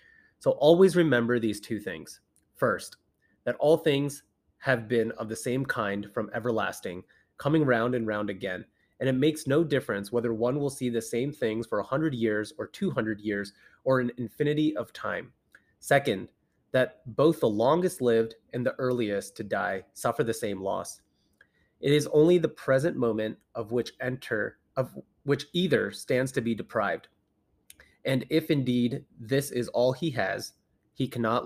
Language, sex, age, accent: English, male, 30-49, American